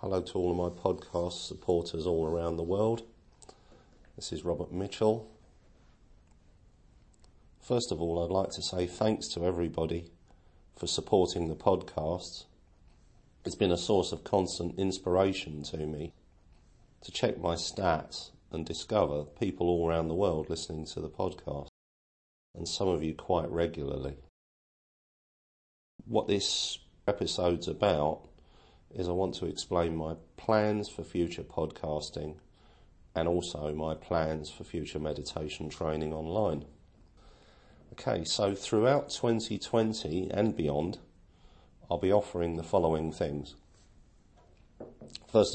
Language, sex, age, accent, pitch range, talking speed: English, male, 40-59, British, 75-90 Hz, 125 wpm